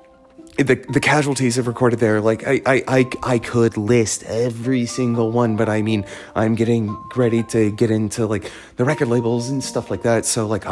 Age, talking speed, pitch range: 30-49, 195 wpm, 100-125 Hz